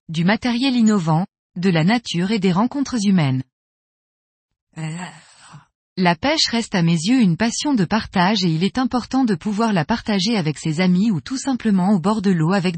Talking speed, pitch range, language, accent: 185 wpm, 180-240 Hz, French, French